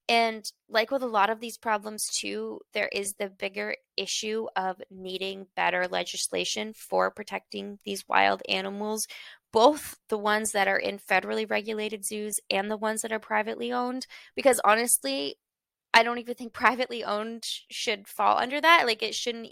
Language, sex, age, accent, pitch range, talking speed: English, female, 20-39, American, 185-225 Hz, 165 wpm